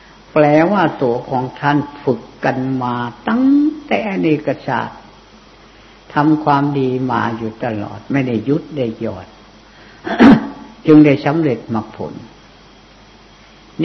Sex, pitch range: female, 115-160 Hz